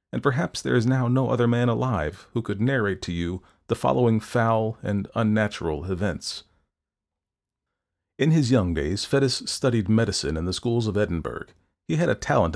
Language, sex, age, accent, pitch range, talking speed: English, male, 40-59, American, 95-125 Hz, 170 wpm